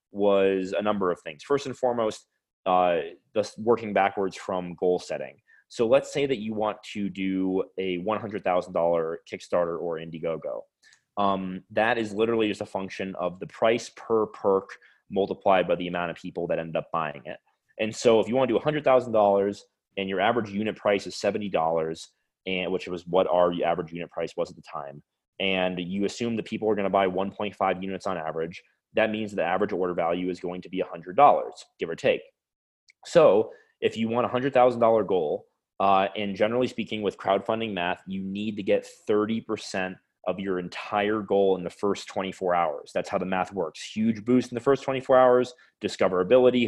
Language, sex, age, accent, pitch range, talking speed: English, male, 20-39, American, 95-115 Hz, 190 wpm